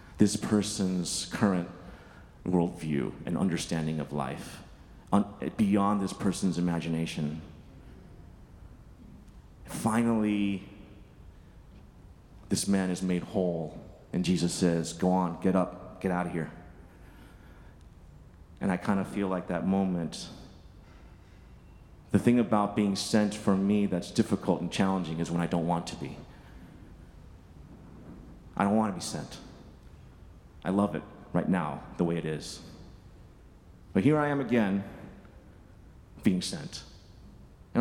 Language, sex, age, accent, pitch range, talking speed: English, male, 30-49, American, 85-100 Hz, 125 wpm